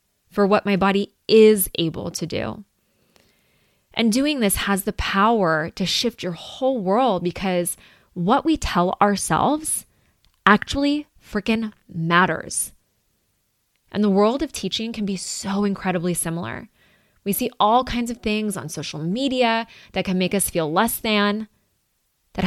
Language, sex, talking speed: English, female, 145 wpm